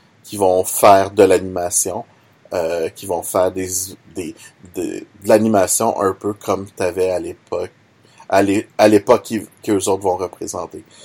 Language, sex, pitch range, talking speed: French, male, 90-145 Hz, 170 wpm